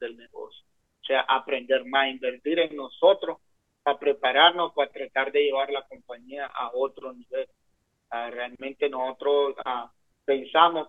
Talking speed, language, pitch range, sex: 140 wpm, English, 135-160 Hz, male